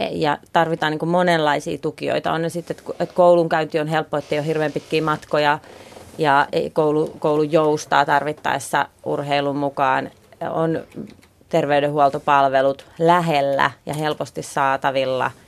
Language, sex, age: Finnish, female, 30-49